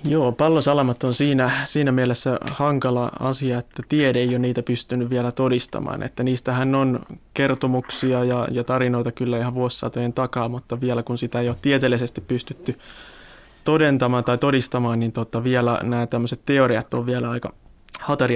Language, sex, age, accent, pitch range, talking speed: Finnish, male, 20-39, native, 120-130 Hz, 145 wpm